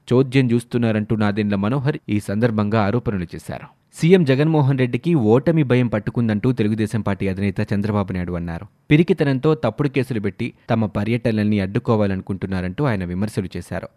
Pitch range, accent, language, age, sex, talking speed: 105-140 Hz, native, Telugu, 20-39, male, 125 wpm